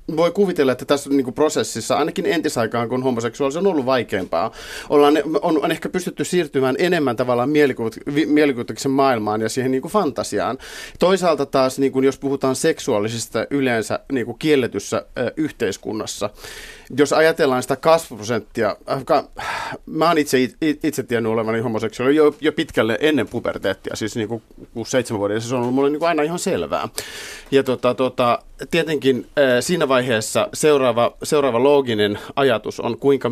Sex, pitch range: male, 115-145 Hz